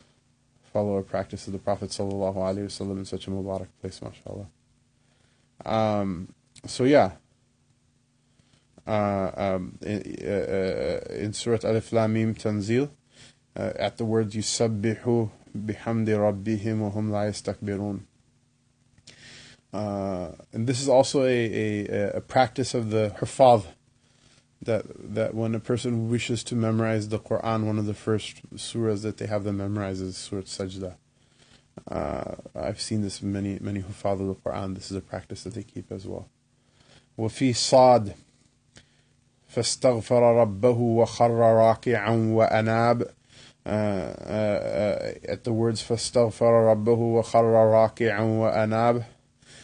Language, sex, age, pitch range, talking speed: English, male, 20-39, 100-125 Hz, 125 wpm